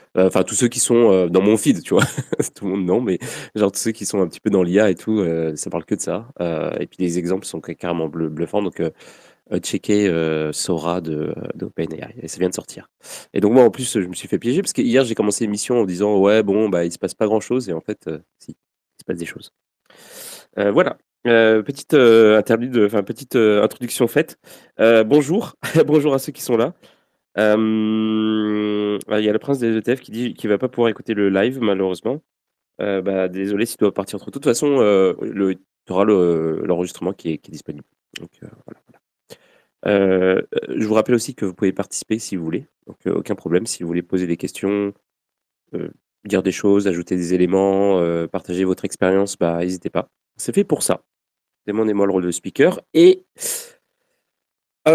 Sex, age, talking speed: male, 20-39, 220 wpm